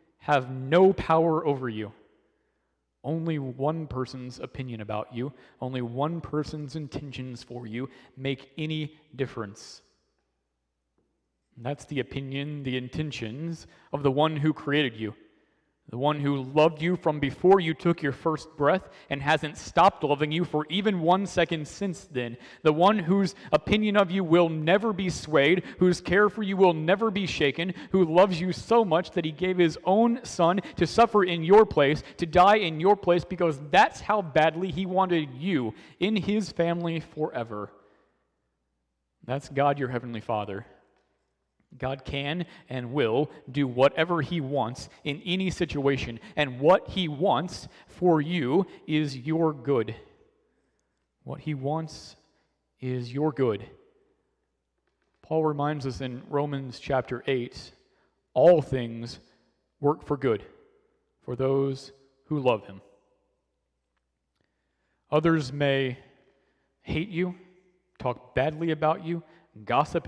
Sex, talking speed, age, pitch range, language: male, 140 wpm, 30-49, 130-175 Hz, English